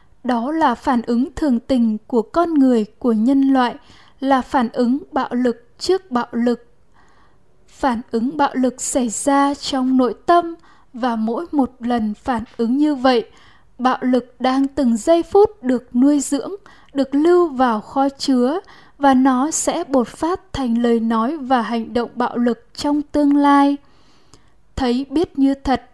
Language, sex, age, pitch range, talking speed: Vietnamese, female, 10-29, 245-285 Hz, 165 wpm